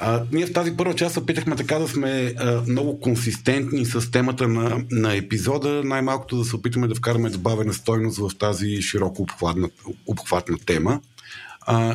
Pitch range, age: 110-135 Hz, 50-69